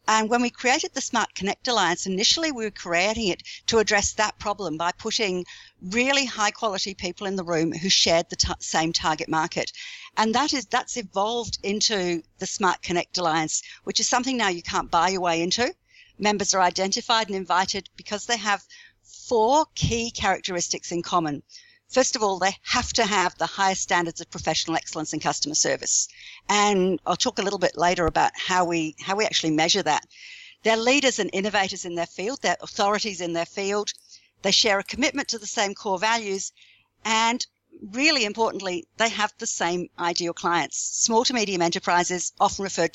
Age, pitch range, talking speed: 50-69, 175-230 Hz, 185 wpm